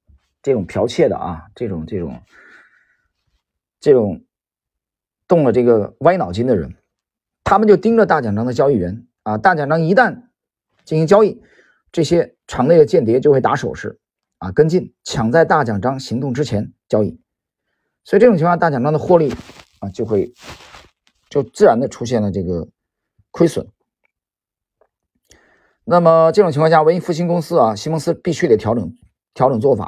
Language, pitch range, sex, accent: Chinese, 105-175 Hz, male, native